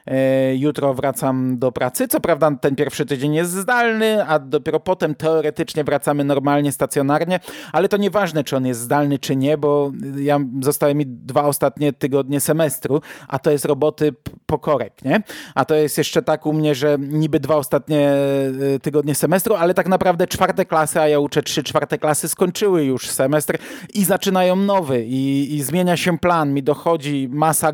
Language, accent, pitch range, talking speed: Polish, native, 140-165 Hz, 175 wpm